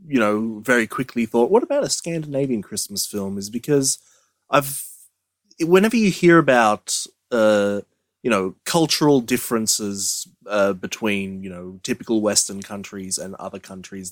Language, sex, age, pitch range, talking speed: English, male, 20-39, 100-125 Hz, 140 wpm